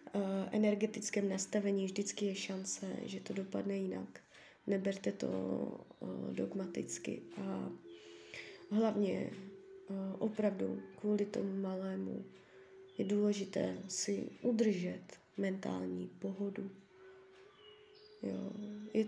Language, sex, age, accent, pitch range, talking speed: Czech, female, 20-39, native, 195-240 Hz, 80 wpm